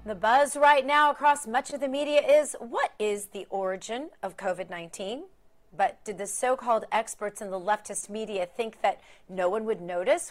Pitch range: 205-310 Hz